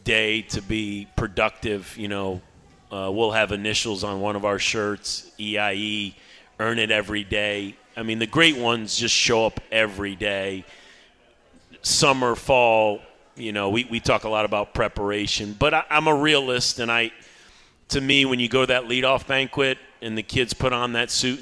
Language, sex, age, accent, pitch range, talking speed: English, male, 40-59, American, 105-125 Hz, 175 wpm